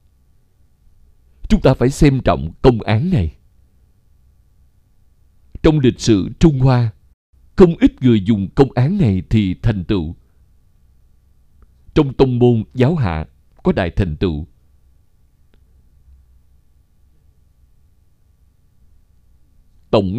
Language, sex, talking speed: Vietnamese, male, 100 wpm